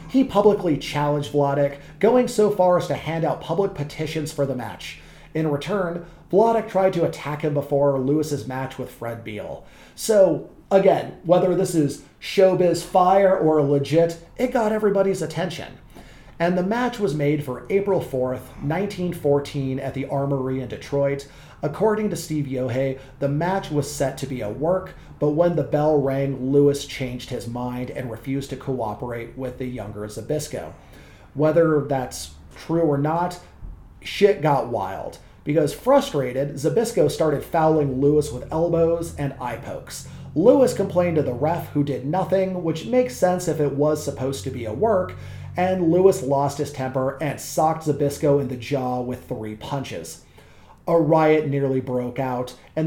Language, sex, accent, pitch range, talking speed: English, male, American, 135-170 Hz, 160 wpm